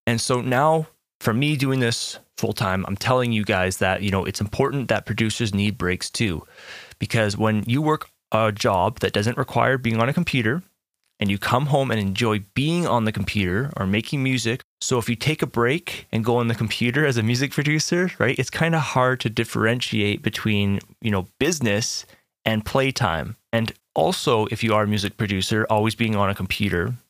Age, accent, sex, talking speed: 20-39, American, male, 200 wpm